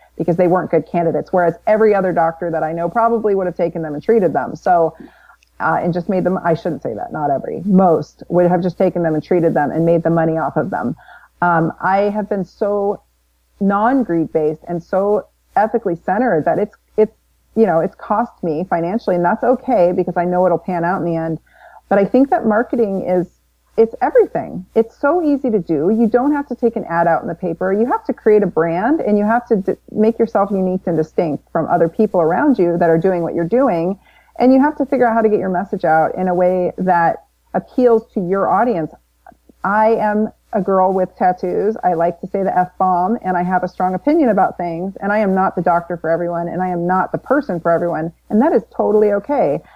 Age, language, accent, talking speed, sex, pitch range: 40-59, English, American, 235 wpm, female, 170-220 Hz